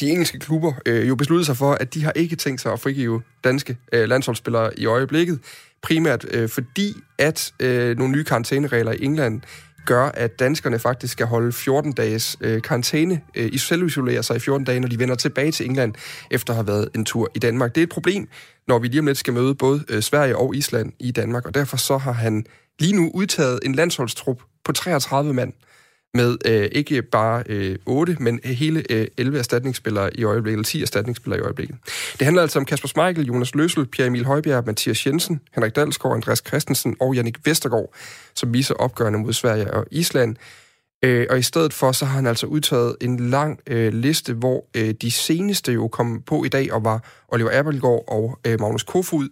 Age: 30-49